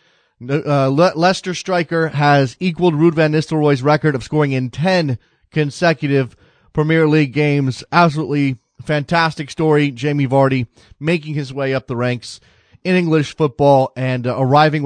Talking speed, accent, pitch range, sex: 135 wpm, American, 135-165 Hz, male